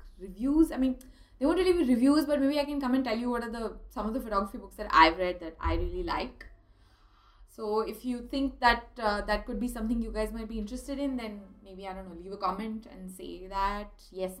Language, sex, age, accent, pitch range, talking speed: English, female, 20-39, Indian, 190-240 Hz, 245 wpm